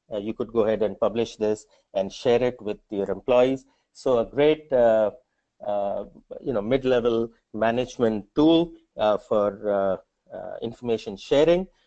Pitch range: 105-130 Hz